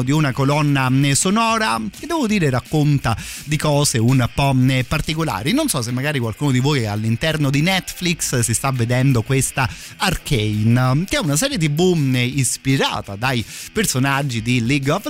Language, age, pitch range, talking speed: Italian, 30-49, 120-150 Hz, 160 wpm